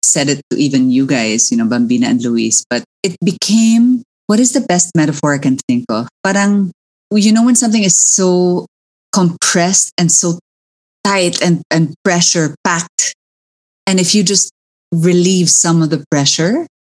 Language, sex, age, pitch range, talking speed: English, female, 20-39, 140-180 Hz, 165 wpm